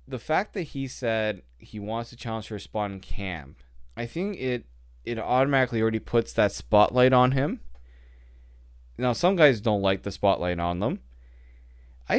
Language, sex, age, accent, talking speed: English, male, 20-39, American, 165 wpm